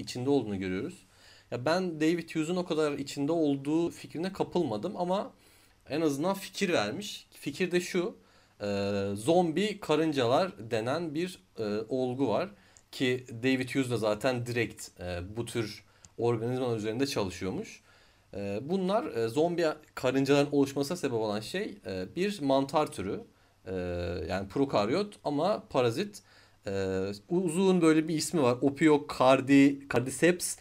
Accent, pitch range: native, 105-160 Hz